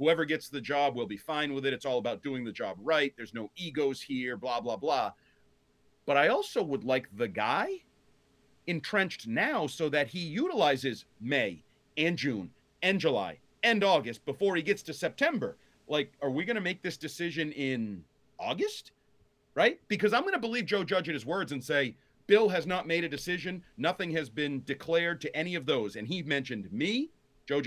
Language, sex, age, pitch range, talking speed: English, male, 40-59, 140-175 Hz, 195 wpm